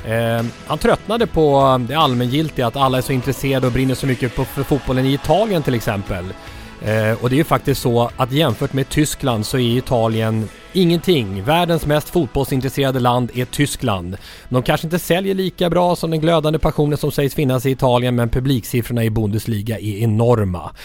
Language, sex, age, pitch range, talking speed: English, male, 30-49, 115-155 Hz, 185 wpm